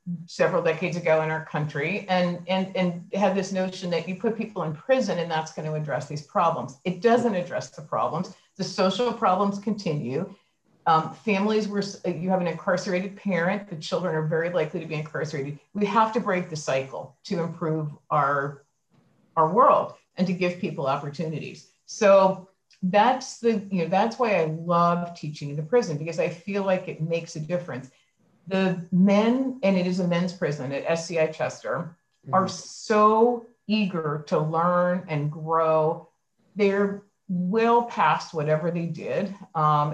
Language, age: English, 50-69